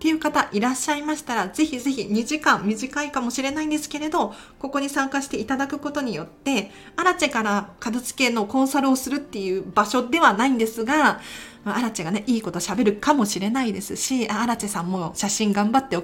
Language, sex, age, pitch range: Japanese, female, 40-59, 205-285 Hz